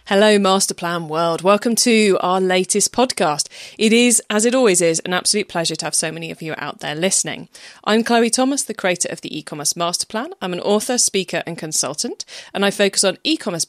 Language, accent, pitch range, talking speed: English, British, 165-240 Hz, 210 wpm